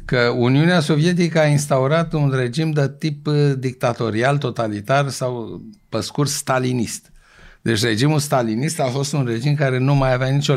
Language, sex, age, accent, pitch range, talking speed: Romanian, male, 60-79, native, 110-140 Hz, 155 wpm